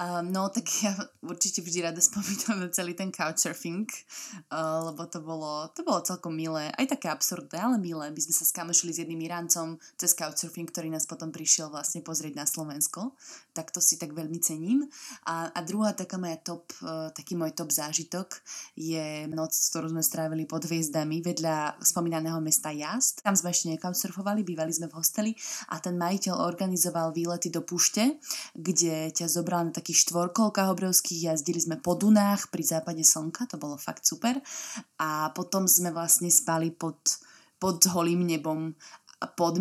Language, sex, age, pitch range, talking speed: Slovak, female, 20-39, 160-185 Hz, 170 wpm